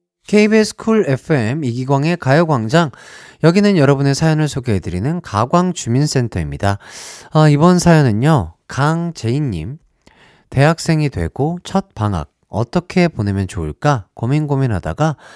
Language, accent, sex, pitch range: Korean, native, male, 95-155 Hz